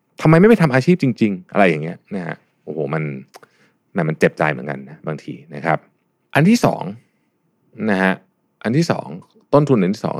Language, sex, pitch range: Thai, male, 95-130 Hz